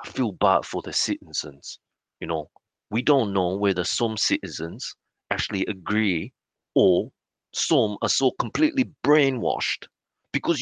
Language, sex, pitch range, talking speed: English, male, 100-140 Hz, 125 wpm